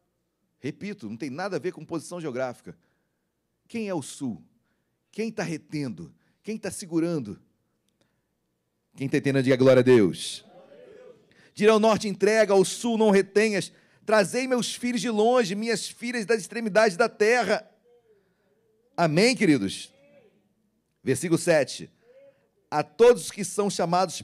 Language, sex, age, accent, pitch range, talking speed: Portuguese, male, 40-59, Brazilian, 145-215 Hz, 135 wpm